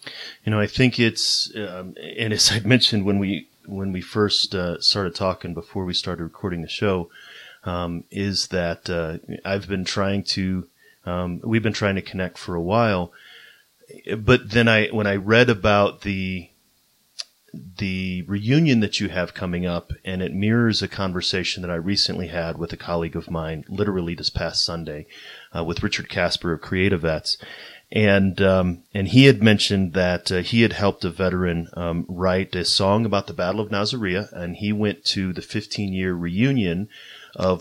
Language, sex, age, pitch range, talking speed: English, male, 30-49, 90-105 Hz, 175 wpm